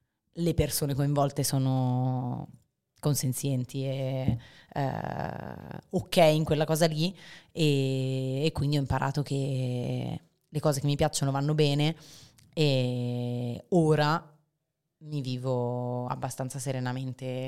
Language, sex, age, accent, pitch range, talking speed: Italian, female, 30-49, native, 135-150 Hz, 105 wpm